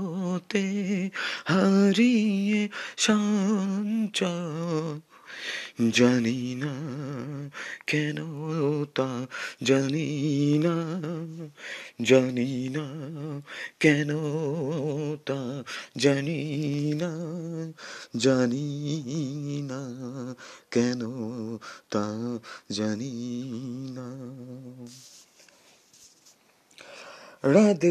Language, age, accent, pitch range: Bengali, 30-49, native, 150-185 Hz